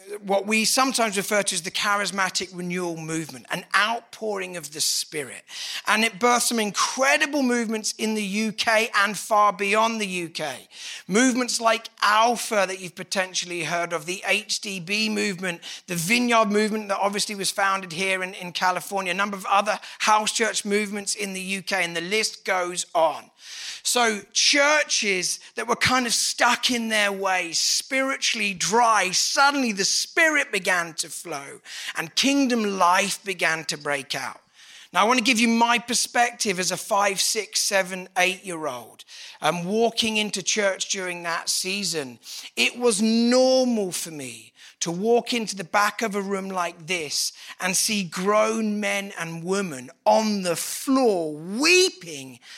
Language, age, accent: English, 40-59, British